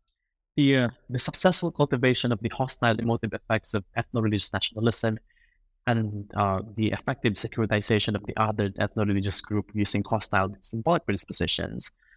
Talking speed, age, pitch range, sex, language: 135 wpm, 20-39, 105-125 Hz, male, English